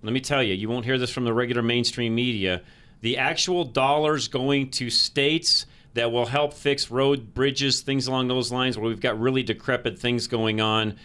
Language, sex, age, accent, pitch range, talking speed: English, male, 40-59, American, 120-155 Hz, 200 wpm